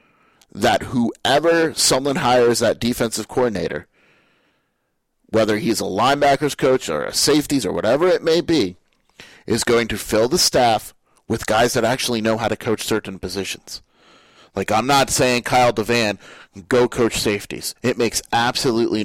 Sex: male